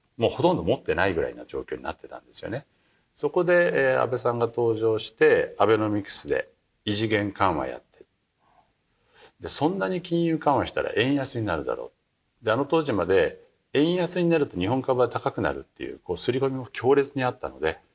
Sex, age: male, 50-69